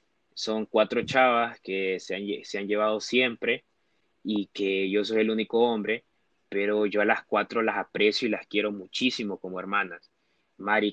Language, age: Spanish, 20-39